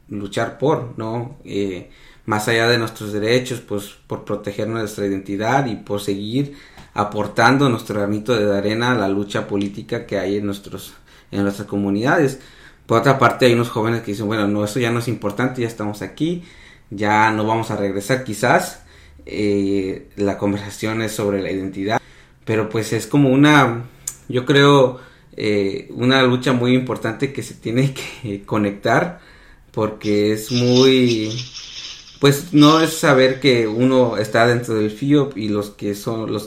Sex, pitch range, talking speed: male, 100-125 Hz, 165 wpm